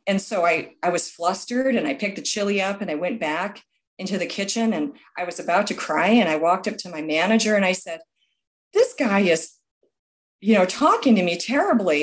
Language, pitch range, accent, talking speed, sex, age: English, 185-250 Hz, American, 220 wpm, female, 40-59